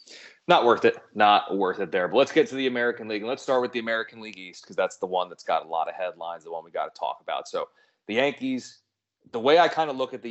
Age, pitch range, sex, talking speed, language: 30-49, 95-130 Hz, male, 290 wpm, English